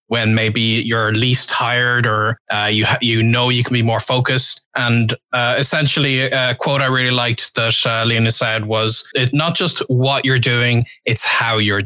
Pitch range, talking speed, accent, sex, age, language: 115-135 Hz, 190 wpm, Irish, male, 20-39, English